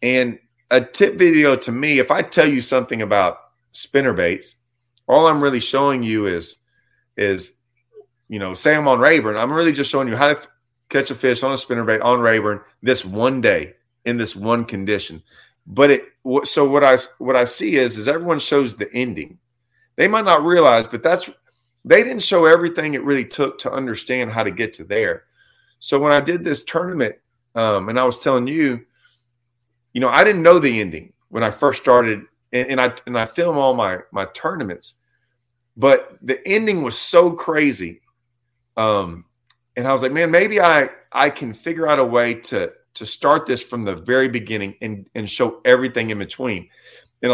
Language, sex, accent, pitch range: English, male, American, 115-140 Hz